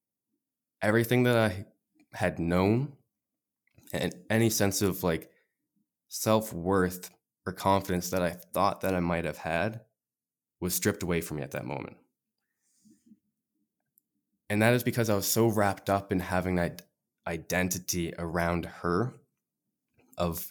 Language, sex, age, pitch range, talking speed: English, male, 20-39, 85-105 Hz, 130 wpm